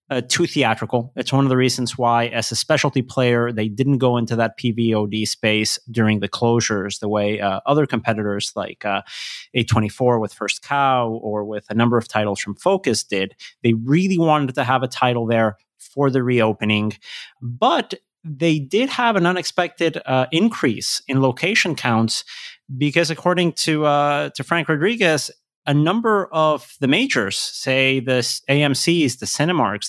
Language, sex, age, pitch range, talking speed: English, male, 30-49, 115-150 Hz, 165 wpm